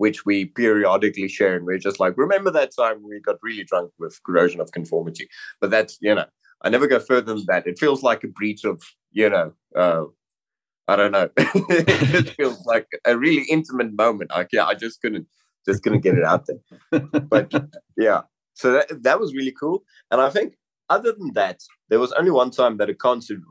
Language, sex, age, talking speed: English, male, 20-39, 205 wpm